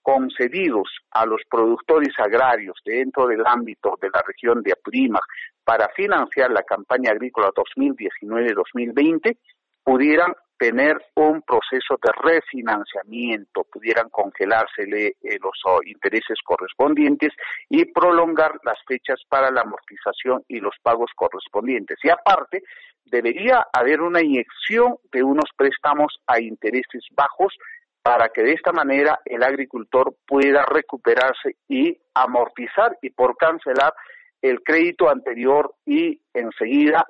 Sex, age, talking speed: male, 50-69, 115 wpm